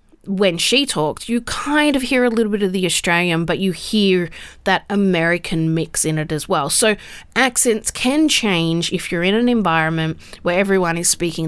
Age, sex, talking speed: 30-49, female, 190 wpm